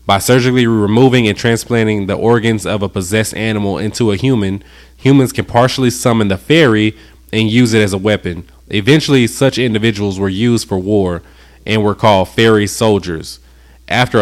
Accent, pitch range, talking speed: American, 95-115 Hz, 165 wpm